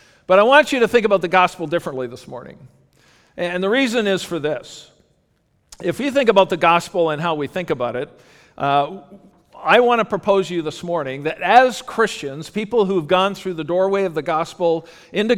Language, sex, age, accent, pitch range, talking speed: English, male, 50-69, American, 155-190 Hz, 205 wpm